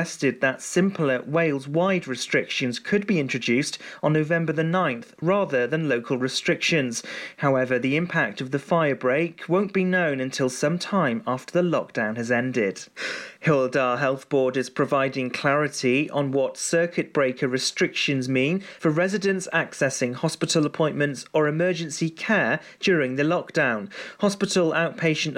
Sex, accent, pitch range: male, British, 135-170 Hz